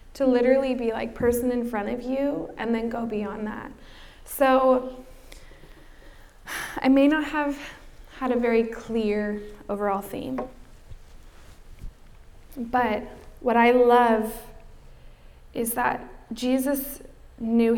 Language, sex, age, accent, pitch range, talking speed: English, female, 20-39, American, 215-245 Hz, 110 wpm